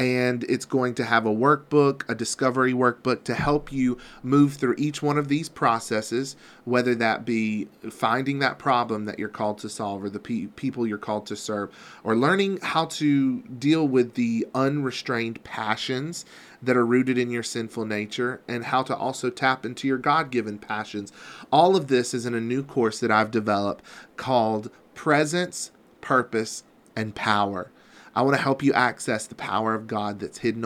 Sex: male